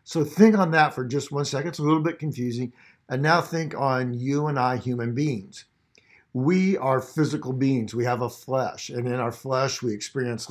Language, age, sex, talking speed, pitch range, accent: English, 50-69, male, 205 wpm, 120-150 Hz, American